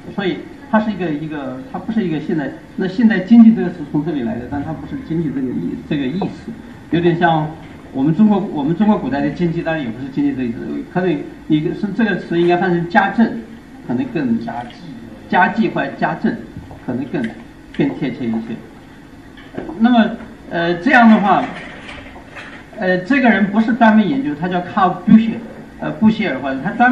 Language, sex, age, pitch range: English, male, 50-69, 160-220 Hz